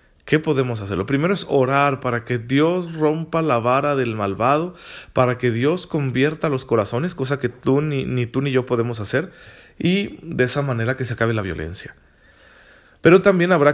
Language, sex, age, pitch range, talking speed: Spanish, male, 40-59, 120-150 Hz, 190 wpm